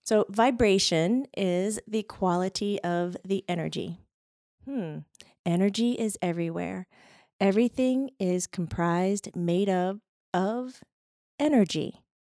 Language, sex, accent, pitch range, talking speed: English, female, American, 175-220 Hz, 100 wpm